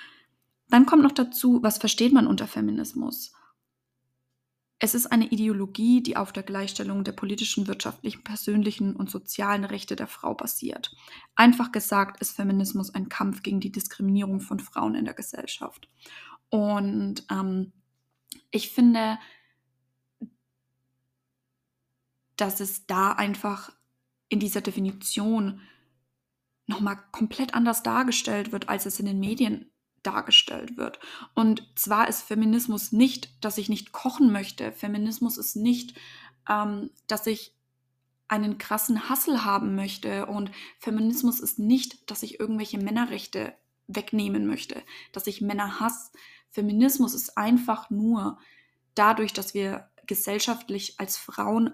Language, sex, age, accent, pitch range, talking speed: English, female, 20-39, German, 190-225 Hz, 130 wpm